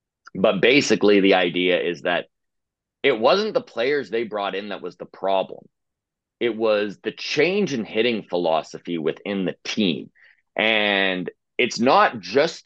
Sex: male